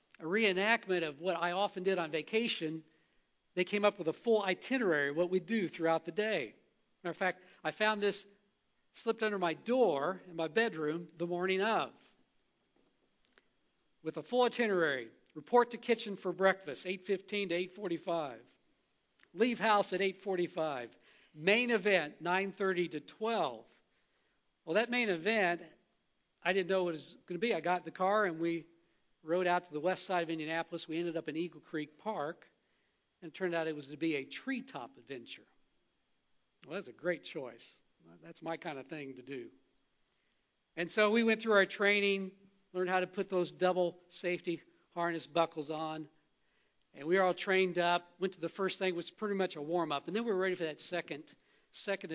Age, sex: 50-69, male